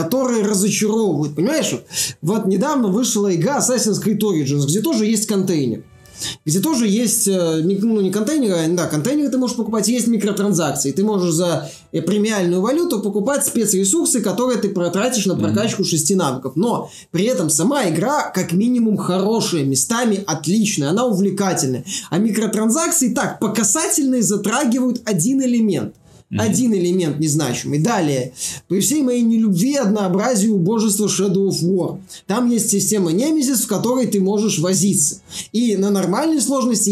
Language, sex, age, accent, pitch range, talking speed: Russian, male, 20-39, native, 175-225 Hz, 145 wpm